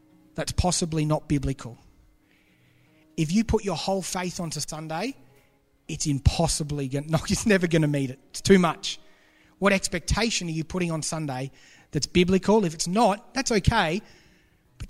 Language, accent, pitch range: English, Australian, 140-190 Hz